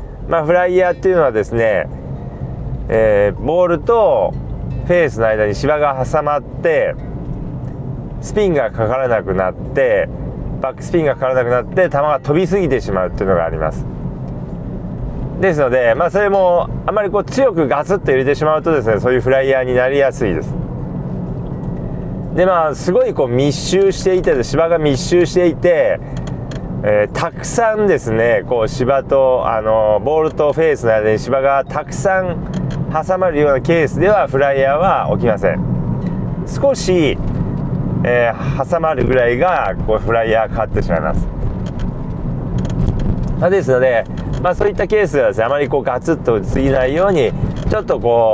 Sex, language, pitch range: male, Japanese, 125-175 Hz